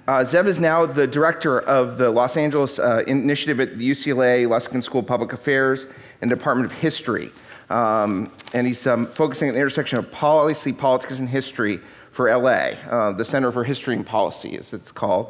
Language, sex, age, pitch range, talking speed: English, male, 40-59, 120-145 Hz, 190 wpm